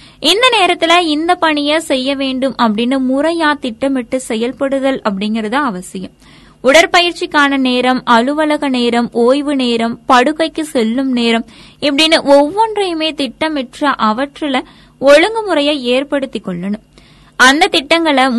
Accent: native